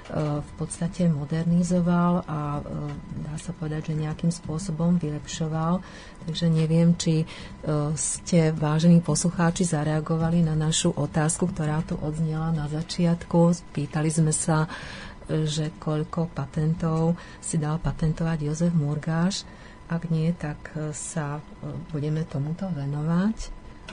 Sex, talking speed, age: female, 110 wpm, 40-59